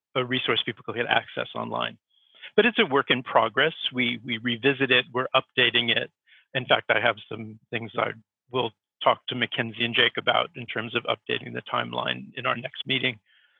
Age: 50-69